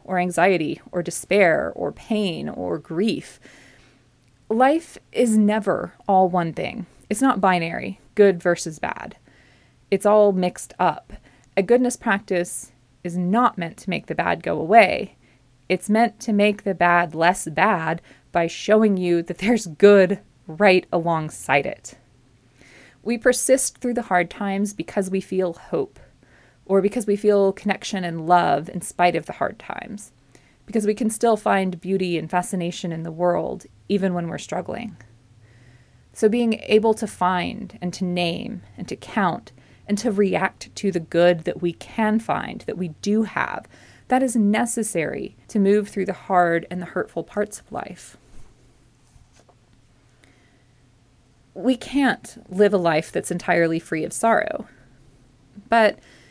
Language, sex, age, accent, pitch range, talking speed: English, female, 30-49, American, 160-210 Hz, 150 wpm